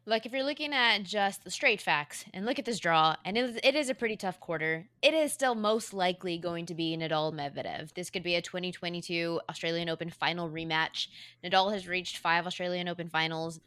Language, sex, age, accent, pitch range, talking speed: English, female, 20-39, American, 175-225 Hz, 205 wpm